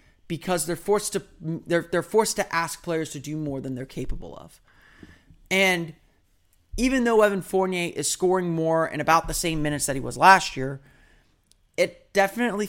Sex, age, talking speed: male, 30-49, 175 wpm